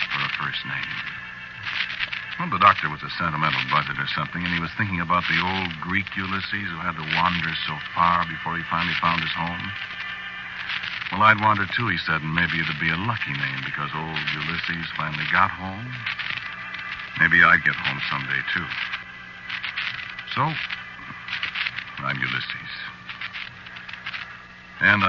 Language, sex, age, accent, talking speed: English, male, 60-79, American, 150 wpm